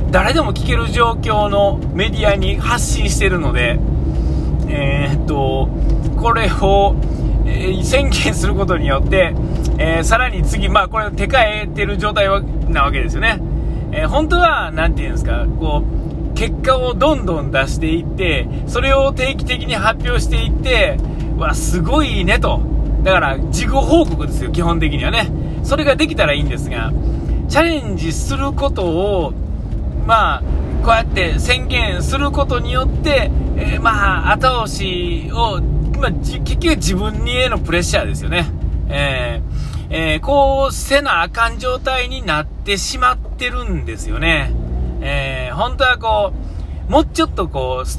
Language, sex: Japanese, male